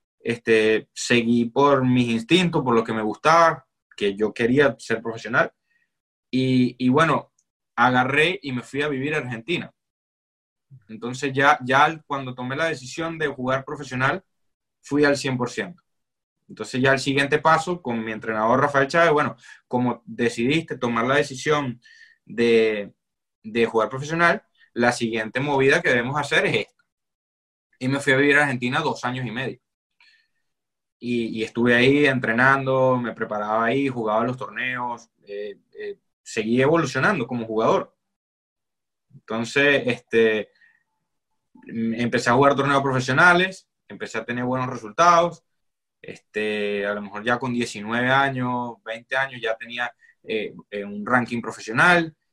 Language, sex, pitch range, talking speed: Spanish, male, 115-140 Hz, 140 wpm